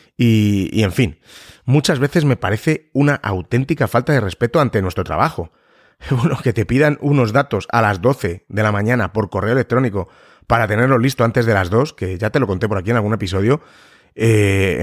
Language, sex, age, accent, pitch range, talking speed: Spanish, male, 30-49, Spanish, 100-130 Hz, 200 wpm